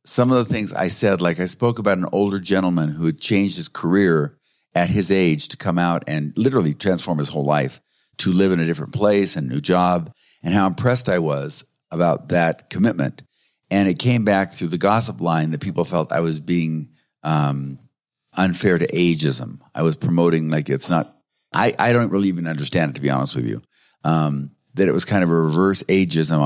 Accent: American